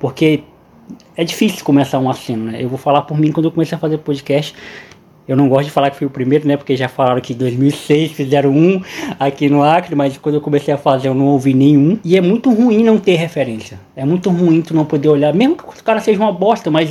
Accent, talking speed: Brazilian, 250 wpm